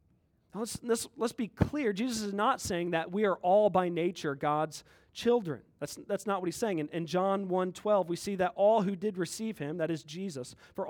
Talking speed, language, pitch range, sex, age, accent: 220 wpm, English, 180-230 Hz, male, 40-59, American